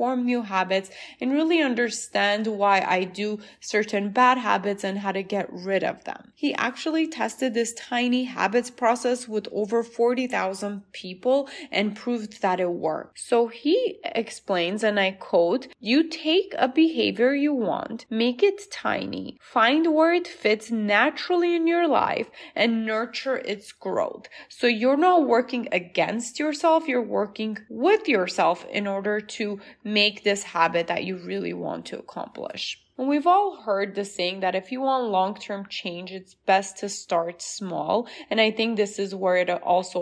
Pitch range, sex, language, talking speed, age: 195-255 Hz, female, English, 160 wpm, 20-39